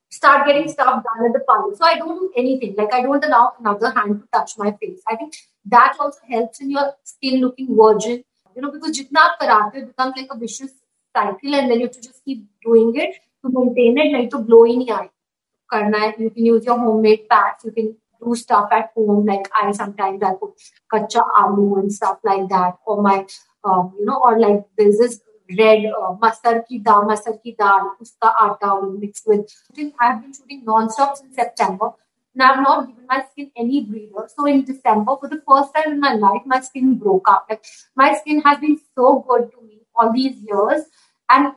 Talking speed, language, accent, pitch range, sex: 155 wpm, Hindi, native, 220-270 Hz, female